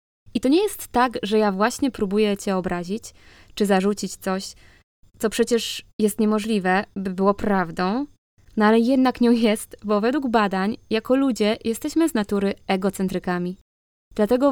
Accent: native